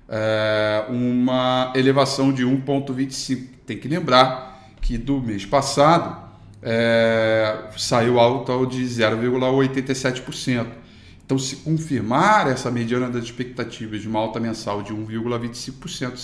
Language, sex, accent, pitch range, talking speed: Portuguese, male, Brazilian, 115-135 Hz, 105 wpm